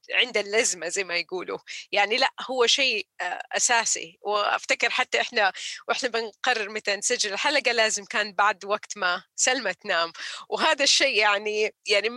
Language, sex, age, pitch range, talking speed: Arabic, female, 30-49, 205-270 Hz, 145 wpm